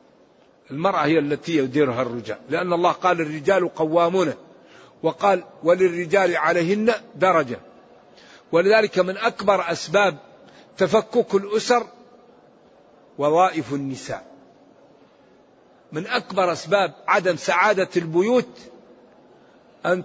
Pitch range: 170-210 Hz